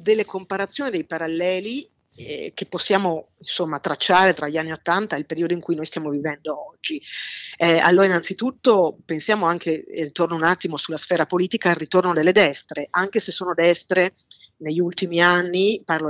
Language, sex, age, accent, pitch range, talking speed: Italian, female, 30-49, native, 165-195 Hz, 170 wpm